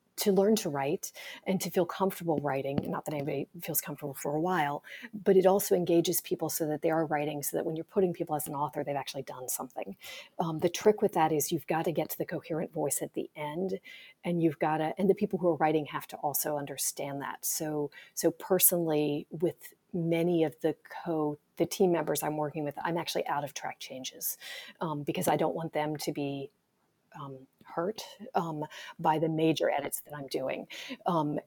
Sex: female